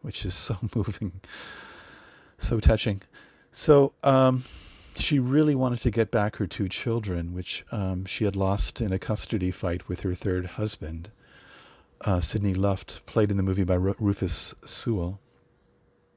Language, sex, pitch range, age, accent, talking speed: English, male, 95-115 Hz, 40-59, American, 150 wpm